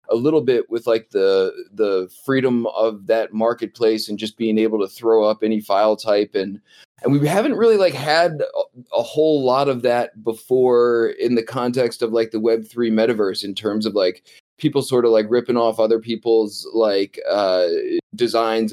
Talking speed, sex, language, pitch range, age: 185 wpm, male, English, 110-150 Hz, 20-39